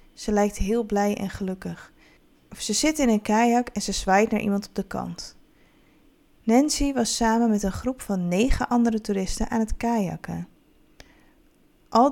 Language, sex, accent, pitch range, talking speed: Dutch, female, Dutch, 185-235 Hz, 165 wpm